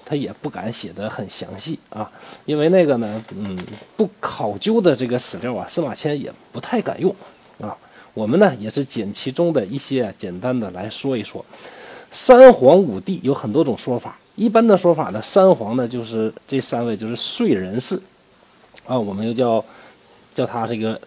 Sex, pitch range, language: male, 115-185 Hz, Chinese